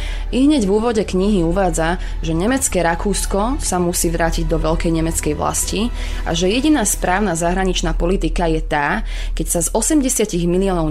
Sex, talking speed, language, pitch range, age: female, 160 wpm, Slovak, 165-195 Hz, 20-39